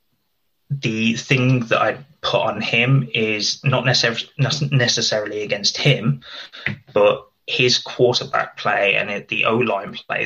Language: English